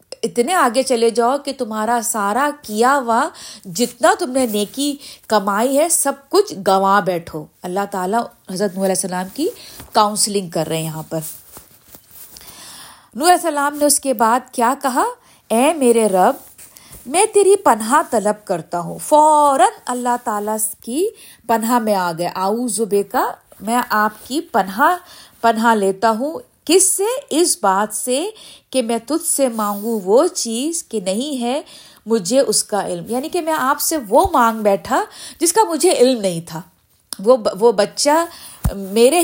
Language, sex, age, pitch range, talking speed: Urdu, female, 50-69, 210-290 Hz, 160 wpm